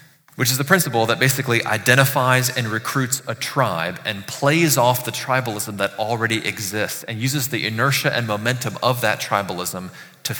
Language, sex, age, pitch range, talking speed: English, male, 30-49, 110-140 Hz, 165 wpm